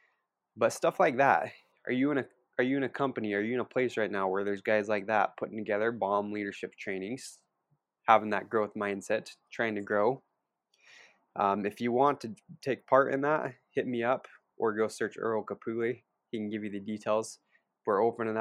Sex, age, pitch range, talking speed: male, 20-39, 105-125 Hz, 200 wpm